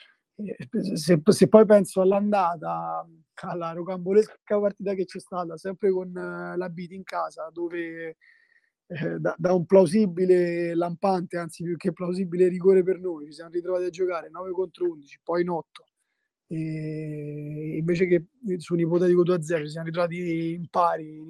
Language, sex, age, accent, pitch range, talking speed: Italian, male, 20-39, native, 165-190 Hz, 165 wpm